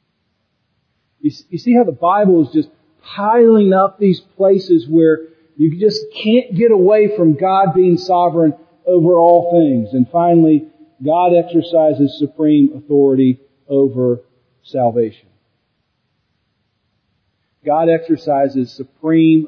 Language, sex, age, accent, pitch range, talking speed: English, male, 50-69, American, 125-160 Hz, 110 wpm